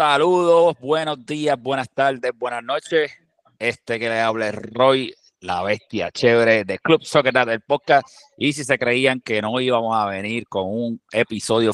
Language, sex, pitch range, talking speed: Spanish, male, 115-145 Hz, 165 wpm